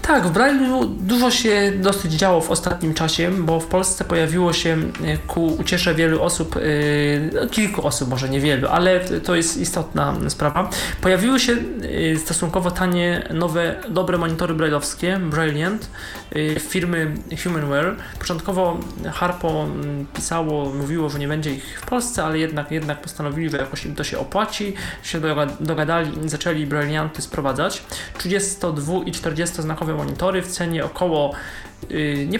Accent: native